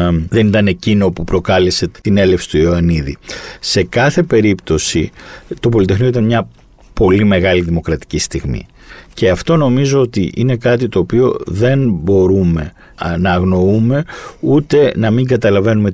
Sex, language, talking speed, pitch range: male, Greek, 135 wpm, 90-125 Hz